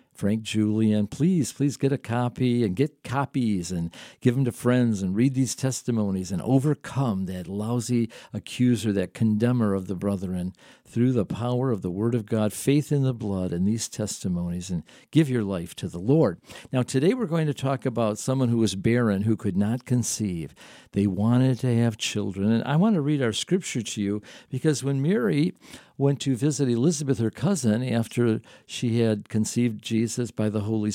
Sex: male